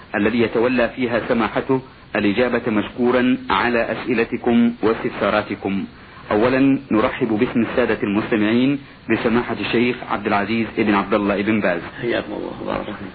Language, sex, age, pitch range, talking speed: Arabic, male, 50-69, 115-135 Hz, 115 wpm